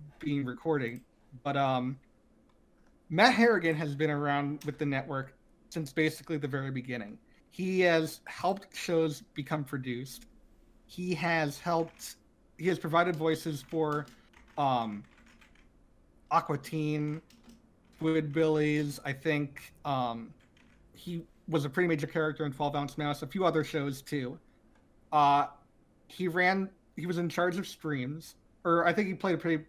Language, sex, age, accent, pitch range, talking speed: English, male, 30-49, American, 140-160 Hz, 140 wpm